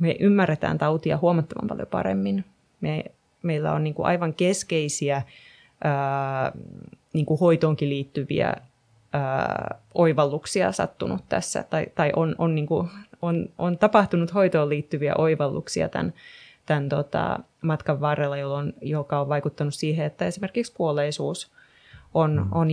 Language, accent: Finnish, native